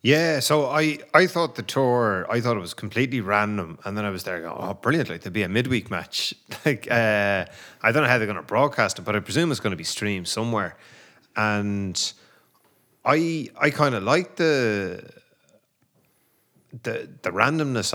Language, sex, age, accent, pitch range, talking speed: English, male, 30-49, Irish, 95-120 Hz, 190 wpm